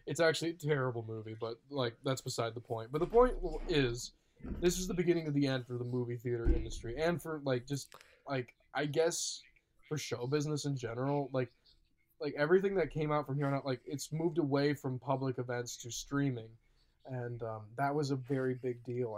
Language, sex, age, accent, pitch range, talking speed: English, male, 20-39, American, 120-145 Hz, 205 wpm